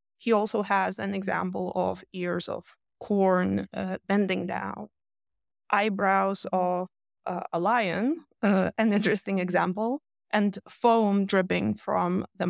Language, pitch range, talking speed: English, 185-240 Hz, 125 wpm